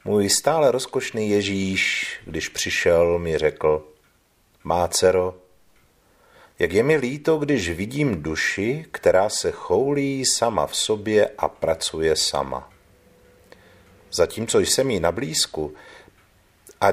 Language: Czech